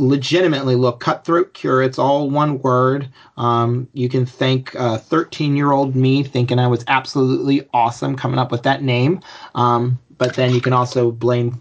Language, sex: English, male